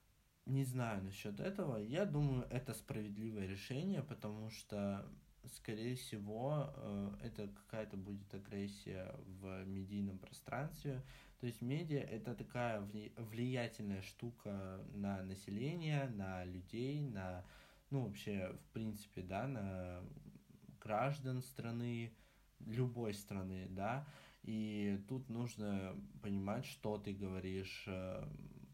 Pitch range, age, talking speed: 95-120 Hz, 20-39, 105 wpm